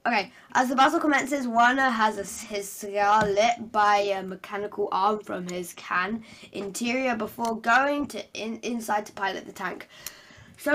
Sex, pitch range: female, 210-265 Hz